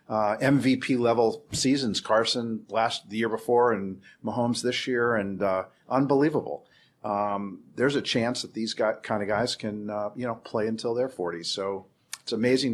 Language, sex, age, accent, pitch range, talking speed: English, male, 50-69, American, 110-130 Hz, 170 wpm